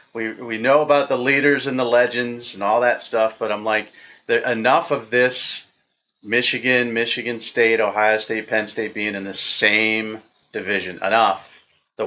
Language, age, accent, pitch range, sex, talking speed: English, 40-59, American, 105-125 Hz, male, 170 wpm